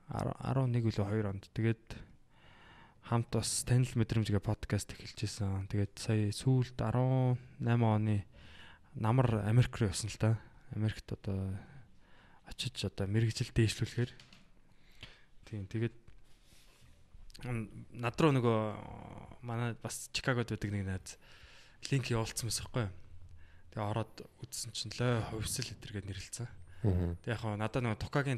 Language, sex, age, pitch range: Korean, male, 20-39, 105-125 Hz